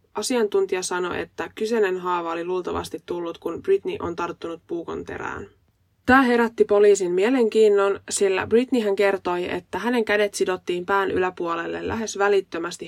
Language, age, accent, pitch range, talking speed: Finnish, 20-39, native, 175-220 Hz, 140 wpm